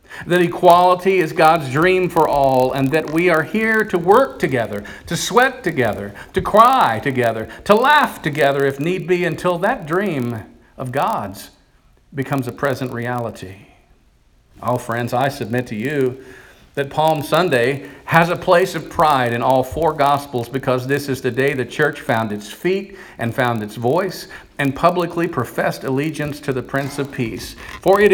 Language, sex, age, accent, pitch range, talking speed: English, male, 50-69, American, 125-180 Hz, 170 wpm